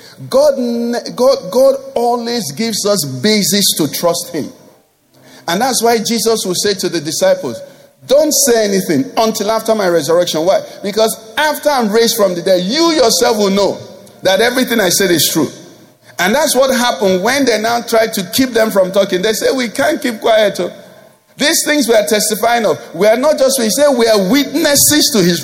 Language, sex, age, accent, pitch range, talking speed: English, male, 50-69, Nigerian, 205-270 Hz, 190 wpm